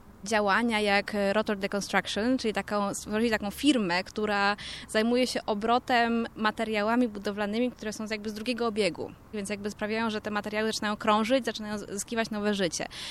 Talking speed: 150 wpm